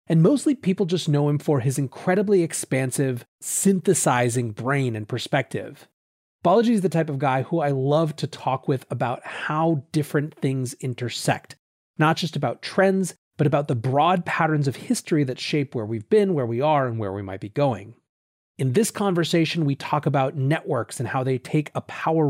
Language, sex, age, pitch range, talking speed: English, male, 30-49, 125-165 Hz, 185 wpm